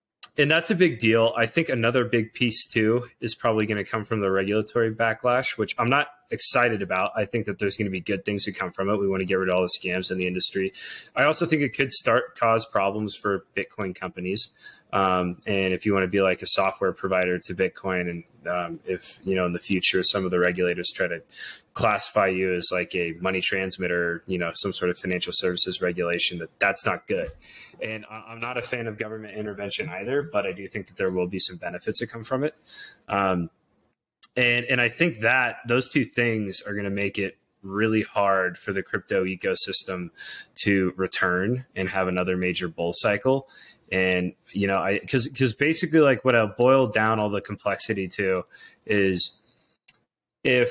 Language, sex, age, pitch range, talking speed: English, male, 30-49, 95-115 Hz, 210 wpm